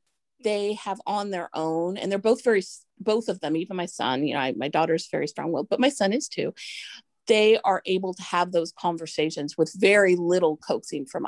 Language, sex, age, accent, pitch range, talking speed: English, female, 30-49, American, 160-190 Hz, 205 wpm